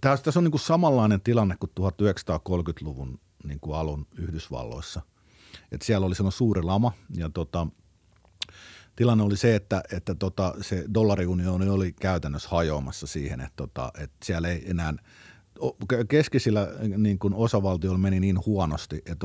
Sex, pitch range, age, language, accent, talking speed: male, 75-100 Hz, 50-69, Finnish, native, 140 wpm